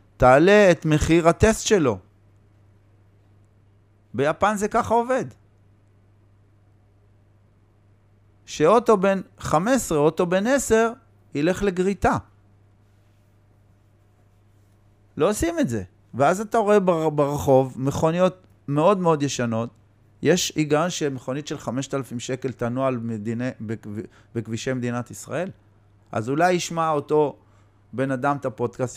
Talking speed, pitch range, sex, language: 100 wpm, 105-160 Hz, male, Hebrew